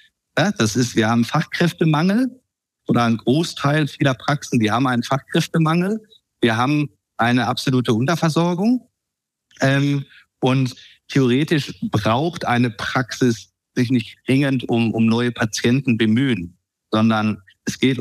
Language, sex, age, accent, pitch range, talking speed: German, male, 50-69, German, 115-145 Hz, 125 wpm